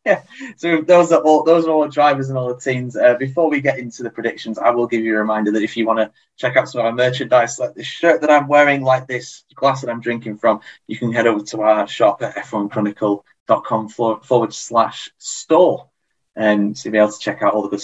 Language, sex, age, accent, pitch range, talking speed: English, male, 20-39, British, 105-135 Hz, 245 wpm